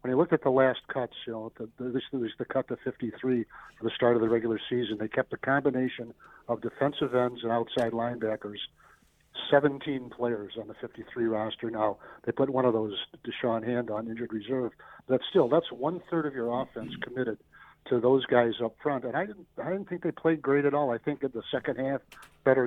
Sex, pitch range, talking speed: male, 115-135 Hz, 215 wpm